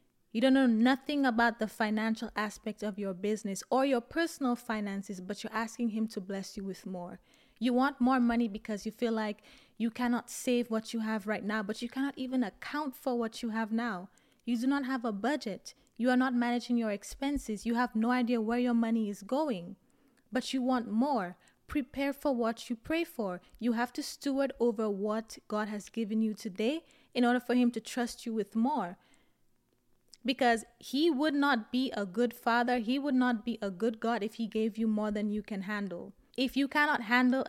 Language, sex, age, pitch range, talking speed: English, female, 20-39, 220-255 Hz, 205 wpm